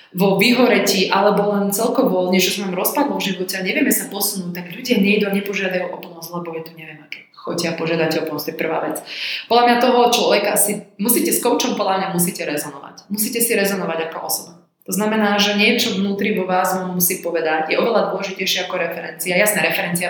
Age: 20-39